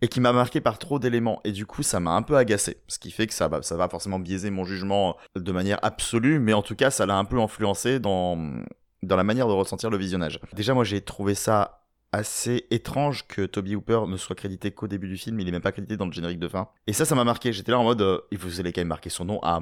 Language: French